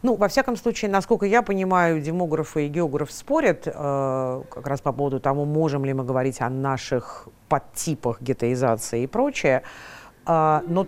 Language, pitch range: Russian, 135-170 Hz